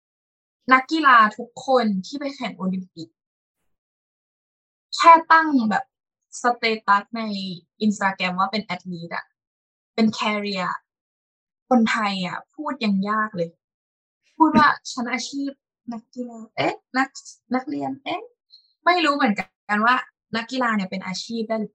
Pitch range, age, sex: 195-260 Hz, 20-39, female